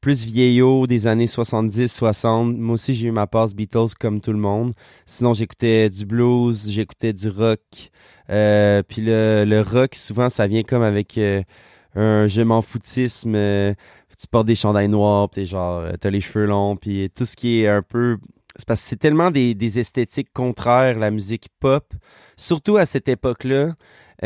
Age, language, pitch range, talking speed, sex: 20-39, French, 105-125 Hz, 180 wpm, male